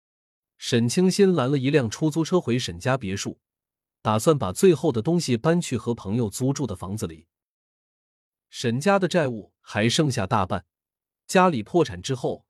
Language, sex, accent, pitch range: Chinese, male, native, 100-155 Hz